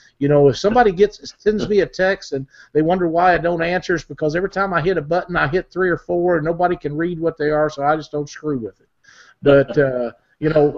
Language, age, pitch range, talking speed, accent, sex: English, 50-69, 145-180 Hz, 260 wpm, American, male